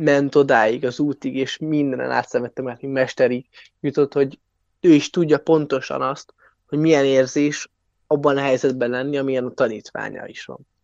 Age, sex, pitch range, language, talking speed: 20-39, male, 130-150 Hz, Hungarian, 160 wpm